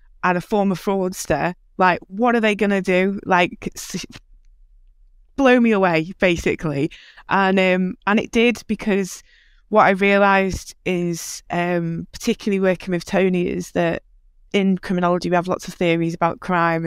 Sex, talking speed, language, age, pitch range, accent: female, 140 wpm, English, 20-39, 165-195 Hz, British